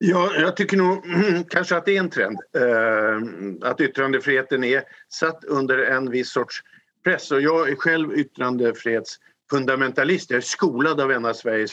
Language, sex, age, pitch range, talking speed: Swedish, male, 50-69, 125-175 Hz, 150 wpm